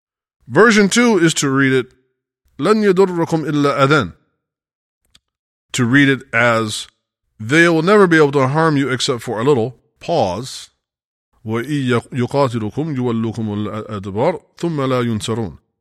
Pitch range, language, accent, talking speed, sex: 110-155 Hz, English, American, 85 wpm, male